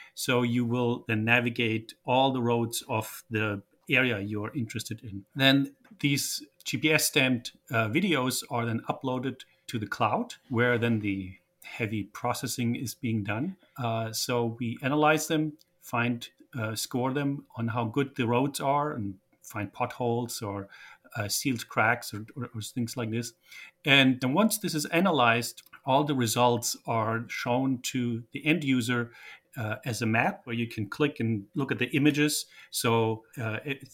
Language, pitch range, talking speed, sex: English, 110-135 Hz, 165 wpm, male